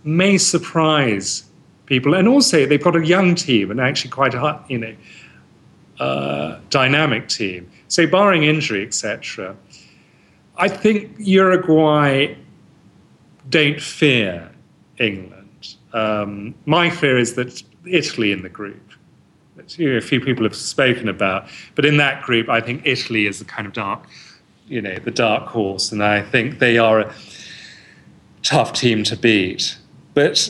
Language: English